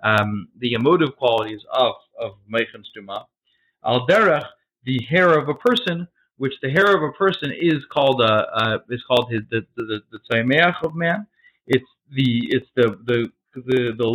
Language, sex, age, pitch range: English, male, 40-59, 125-170 Hz